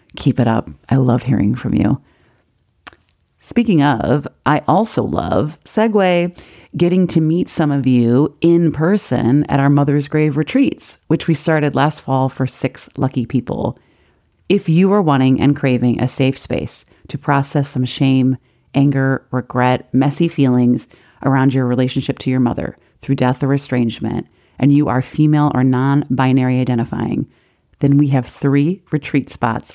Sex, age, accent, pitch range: female, 40-59, American, 125-155 Hz